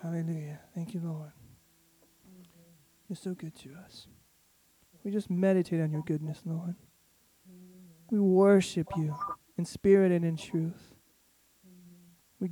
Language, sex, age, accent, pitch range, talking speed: English, male, 20-39, American, 160-185 Hz, 120 wpm